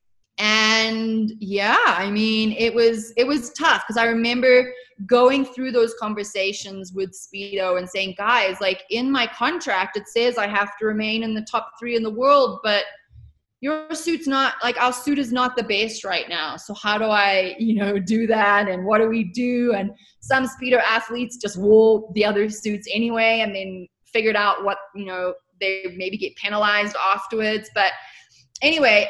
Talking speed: 180 wpm